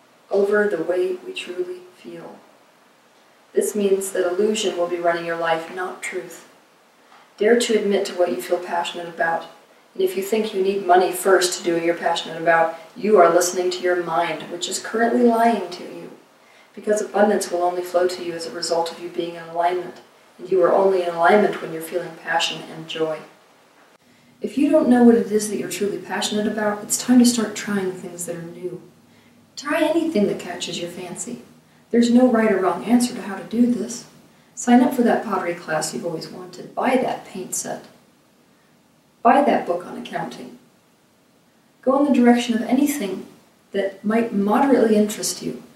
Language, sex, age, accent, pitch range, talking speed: English, female, 40-59, American, 175-235 Hz, 190 wpm